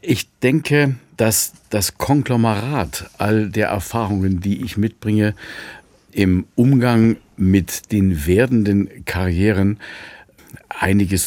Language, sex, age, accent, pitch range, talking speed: German, male, 50-69, German, 95-115 Hz, 95 wpm